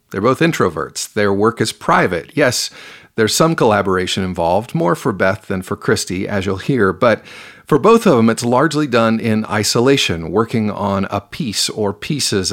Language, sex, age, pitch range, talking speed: English, male, 40-59, 100-115 Hz, 175 wpm